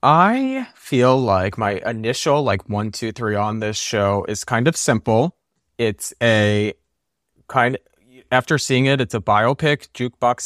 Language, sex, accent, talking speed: English, male, American, 155 wpm